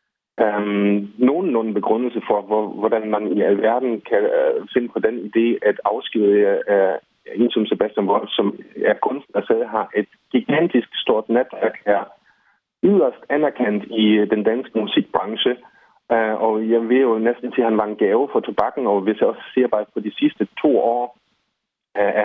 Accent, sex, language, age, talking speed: native, male, Danish, 30-49, 175 wpm